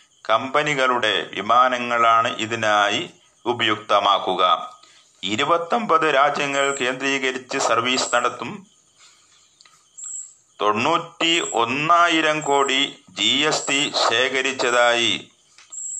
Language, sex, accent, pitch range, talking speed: Malayalam, male, native, 115-145 Hz, 60 wpm